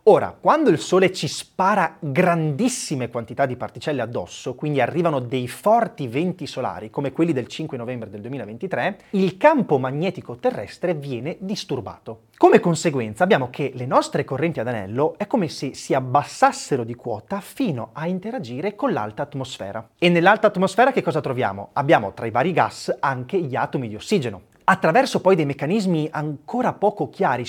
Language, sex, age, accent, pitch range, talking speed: Italian, male, 30-49, native, 130-190 Hz, 165 wpm